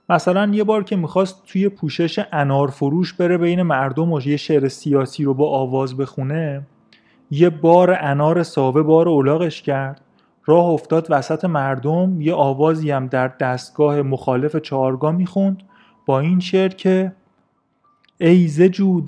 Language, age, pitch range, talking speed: Persian, 30-49, 135-160 Hz, 135 wpm